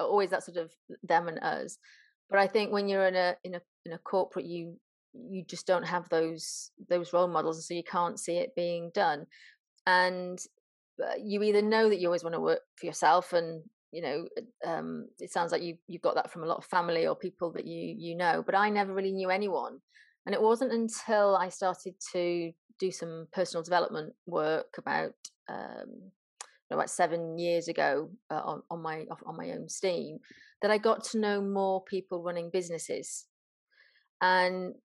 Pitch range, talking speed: 175-210 Hz, 195 wpm